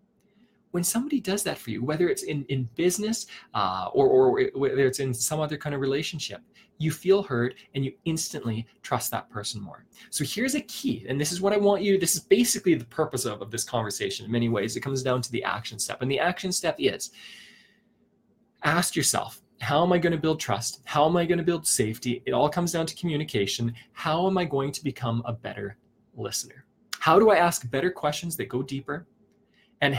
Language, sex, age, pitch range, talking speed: English, male, 20-39, 125-195 Hz, 210 wpm